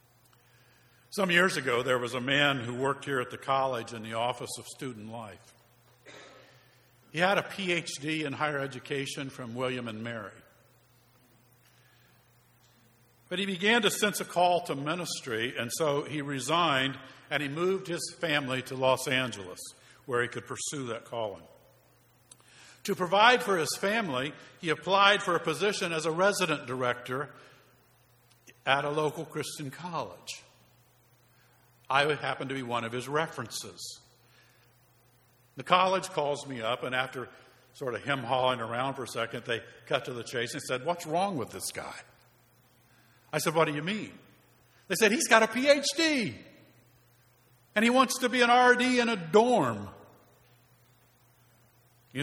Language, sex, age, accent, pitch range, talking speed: English, male, 50-69, American, 120-160 Hz, 155 wpm